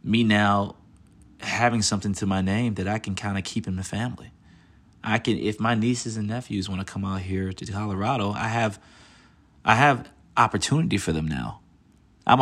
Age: 30-49